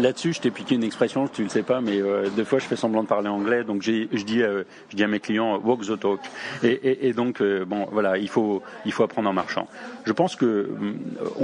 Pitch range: 105-130 Hz